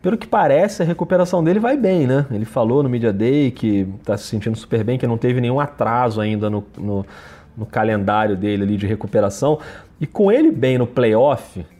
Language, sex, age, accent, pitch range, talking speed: Portuguese, male, 30-49, Brazilian, 105-140 Hz, 205 wpm